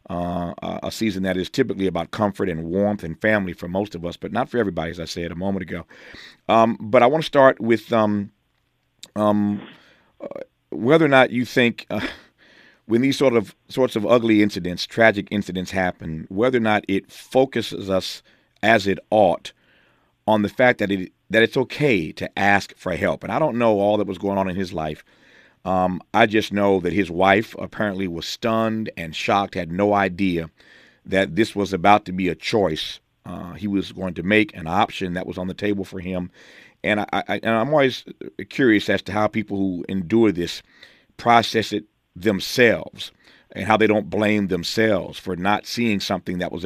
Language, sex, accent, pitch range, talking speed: English, male, American, 95-115 Hz, 195 wpm